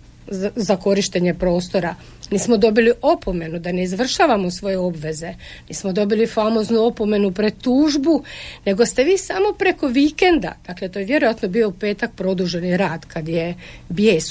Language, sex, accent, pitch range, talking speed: Croatian, female, native, 180-230 Hz, 145 wpm